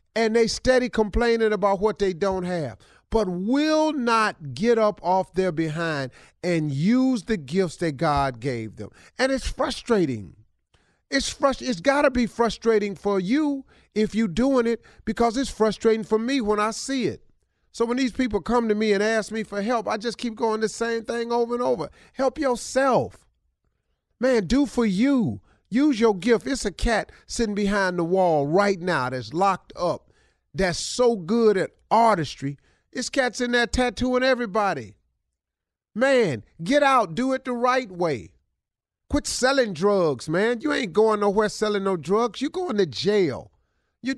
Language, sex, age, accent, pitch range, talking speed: English, male, 40-59, American, 180-245 Hz, 170 wpm